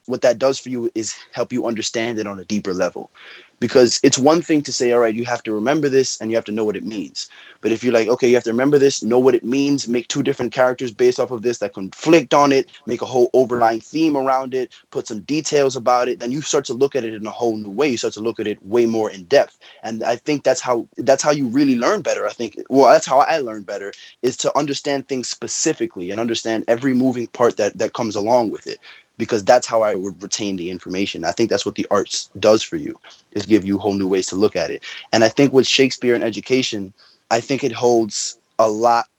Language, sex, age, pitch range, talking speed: English, male, 20-39, 110-135 Hz, 260 wpm